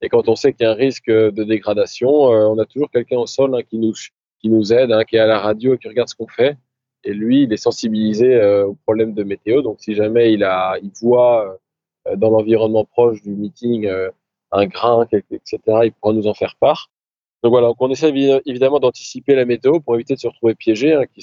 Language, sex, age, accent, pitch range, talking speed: French, male, 20-39, French, 110-135 Hz, 250 wpm